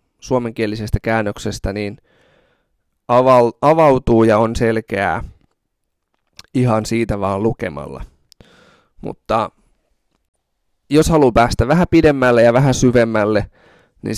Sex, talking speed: male, 90 wpm